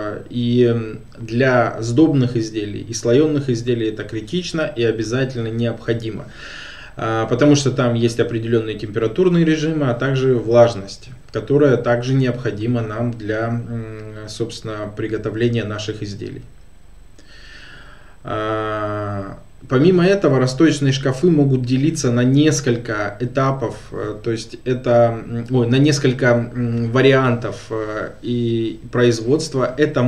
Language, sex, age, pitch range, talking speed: Russian, male, 20-39, 115-135 Hz, 100 wpm